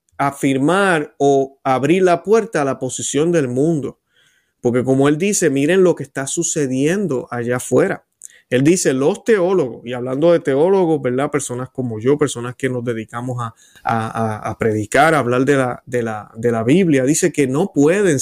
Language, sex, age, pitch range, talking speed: Spanish, male, 30-49, 130-165 Hz, 180 wpm